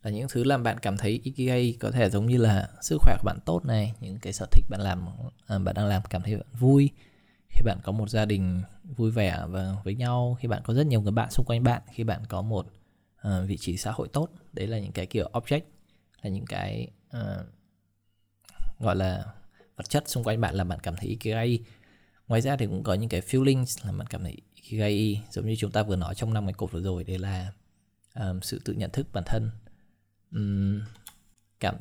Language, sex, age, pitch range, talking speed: Vietnamese, male, 20-39, 95-115 Hz, 225 wpm